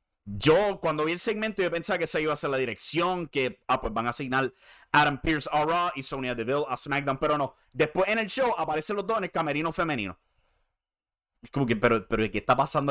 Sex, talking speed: male, 230 wpm